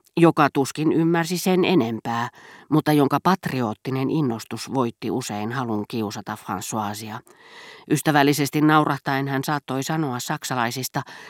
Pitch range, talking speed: 120-160 Hz, 105 wpm